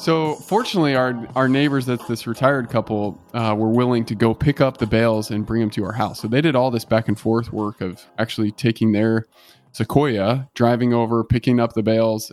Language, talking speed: English, 215 wpm